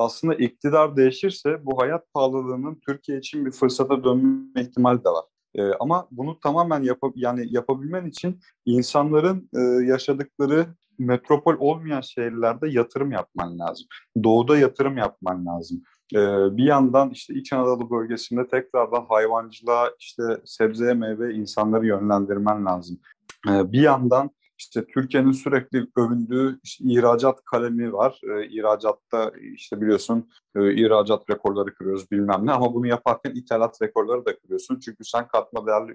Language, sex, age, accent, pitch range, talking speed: Turkish, male, 30-49, native, 110-135 Hz, 135 wpm